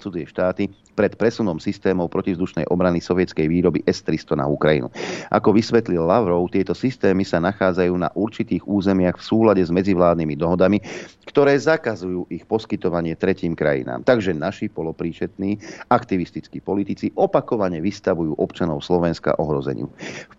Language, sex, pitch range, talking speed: Slovak, male, 85-105 Hz, 125 wpm